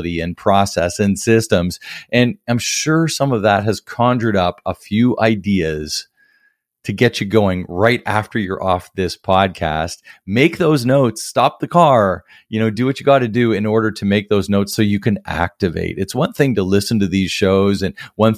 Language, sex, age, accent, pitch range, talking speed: English, male, 40-59, American, 90-120 Hz, 195 wpm